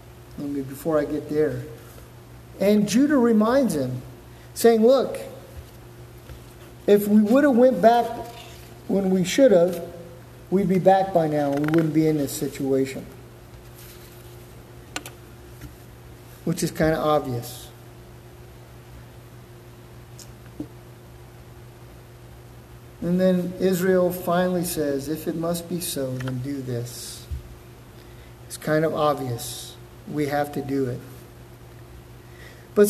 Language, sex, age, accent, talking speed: English, male, 50-69, American, 110 wpm